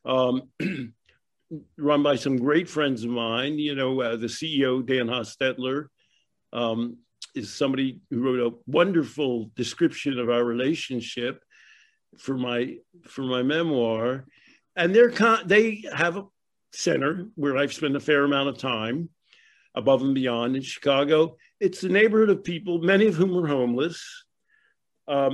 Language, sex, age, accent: English, male, 50-69, American